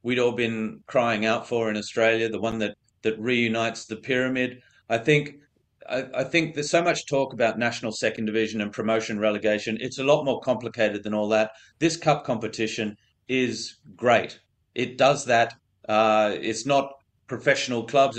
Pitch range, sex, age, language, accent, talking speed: 110-135 Hz, male, 30-49, English, Australian, 165 wpm